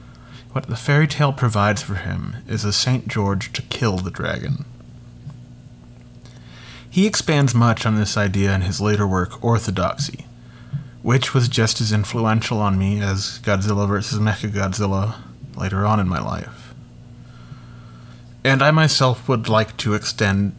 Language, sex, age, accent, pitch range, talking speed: English, male, 30-49, American, 100-125 Hz, 145 wpm